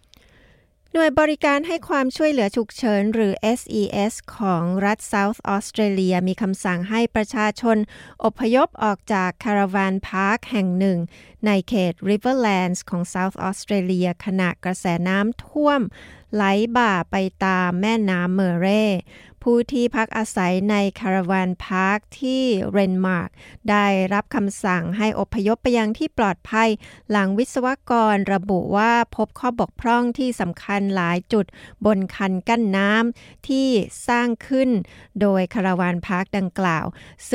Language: Thai